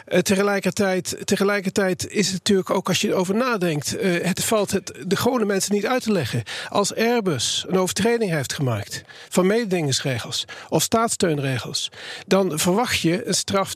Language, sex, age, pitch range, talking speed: Dutch, male, 40-59, 180-215 Hz, 150 wpm